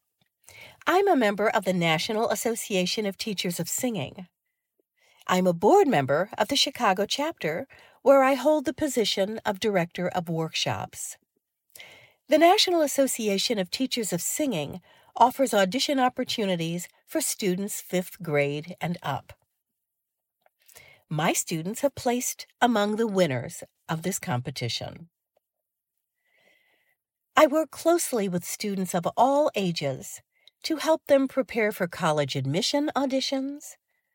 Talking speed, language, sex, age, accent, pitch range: 125 wpm, English, female, 50-69, American, 180-280 Hz